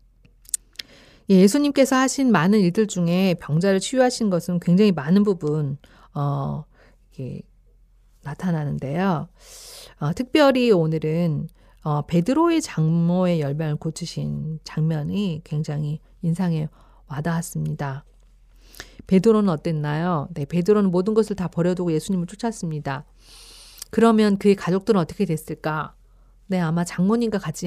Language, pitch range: Korean, 160-205 Hz